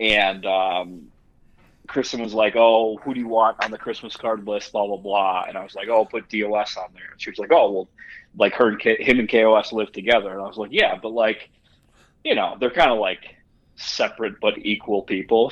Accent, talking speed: American, 215 wpm